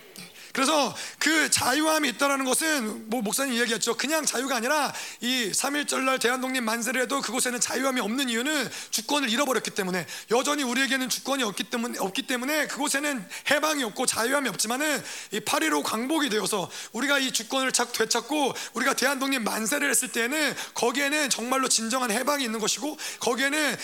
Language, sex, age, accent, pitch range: Korean, male, 30-49, native, 235-285 Hz